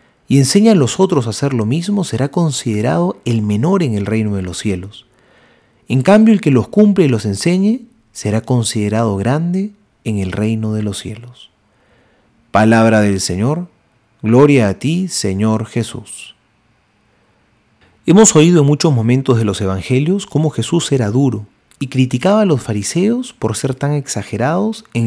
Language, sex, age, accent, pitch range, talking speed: Spanish, male, 40-59, Argentinian, 110-170 Hz, 160 wpm